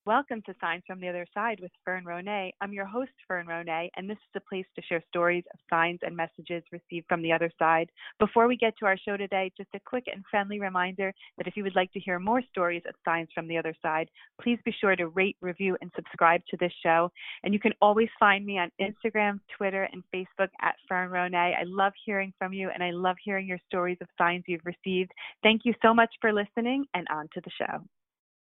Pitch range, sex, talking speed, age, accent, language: 180-215 Hz, female, 235 wpm, 30-49, American, English